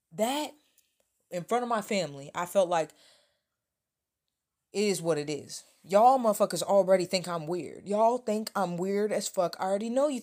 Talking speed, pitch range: 175 wpm, 150-180 Hz